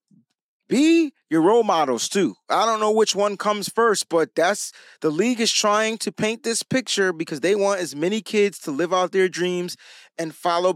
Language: English